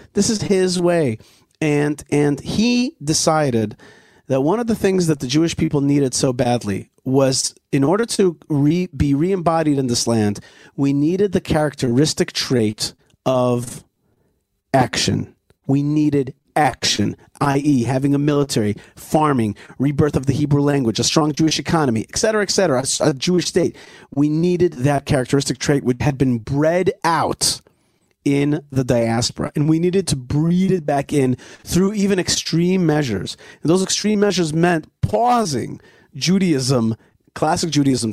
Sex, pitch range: male, 135-175 Hz